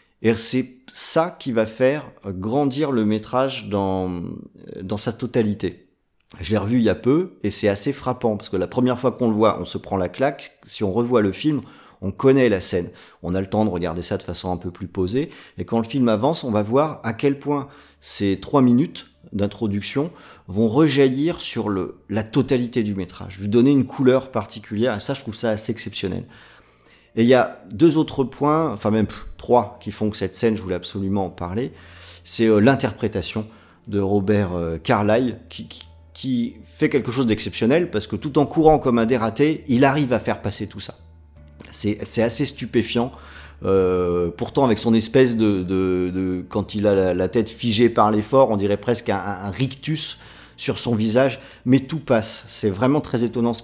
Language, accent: French, French